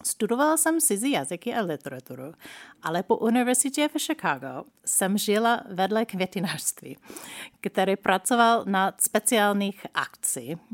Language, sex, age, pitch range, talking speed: Czech, female, 30-49, 165-210 Hz, 110 wpm